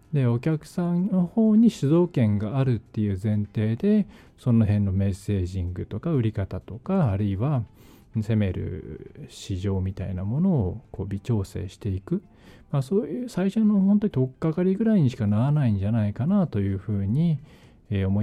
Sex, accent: male, native